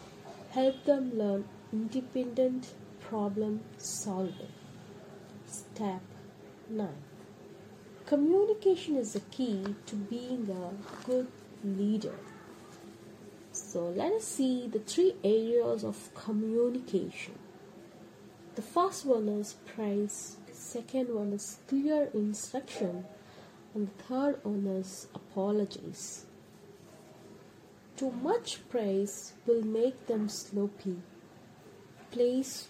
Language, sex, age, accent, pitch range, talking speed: English, female, 30-49, Indian, 195-250 Hz, 95 wpm